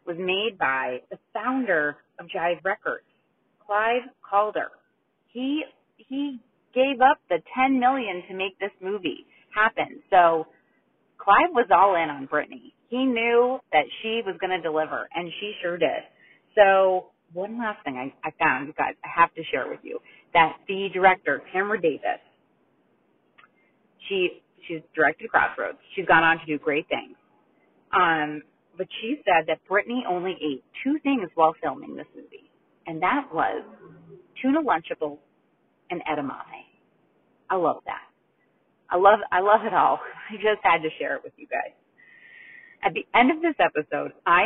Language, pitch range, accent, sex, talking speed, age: English, 160-250 Hz, American, female, 155 wpm, 30-49